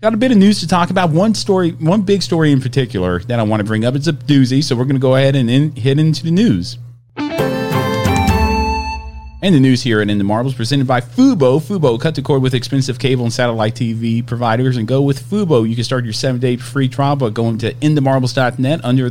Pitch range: 120-160 Hz